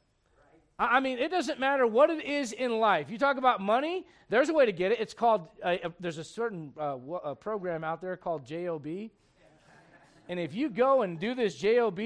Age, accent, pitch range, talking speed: 40-59, American, 195-260 Hz, 210 wpm